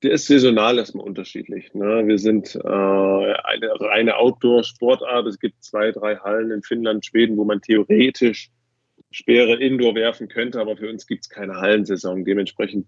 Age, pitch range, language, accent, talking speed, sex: 20-39, 105-115 Hz, German, German, 170 wpm, male